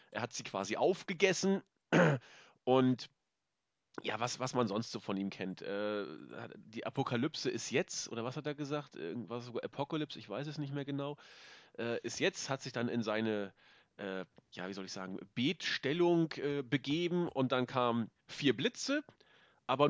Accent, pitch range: German, 120-165 Hz